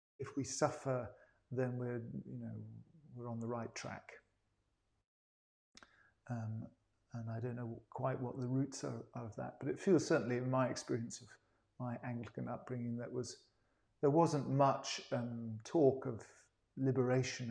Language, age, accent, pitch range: English, 40-59, British, 110-130 Hz